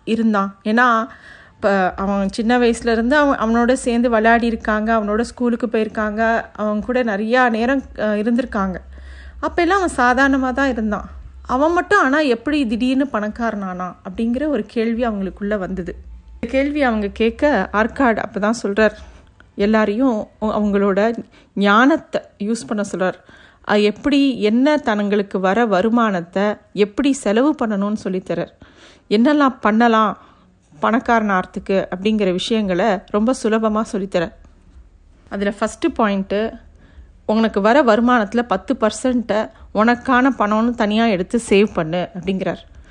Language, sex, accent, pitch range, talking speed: Tamil, female, native, 200-245 Hz, 110 wpm